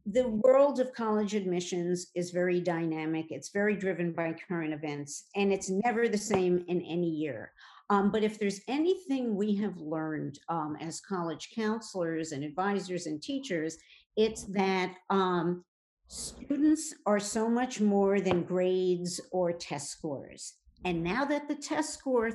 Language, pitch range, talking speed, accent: English, 165-220 Hz, 155 wpm, American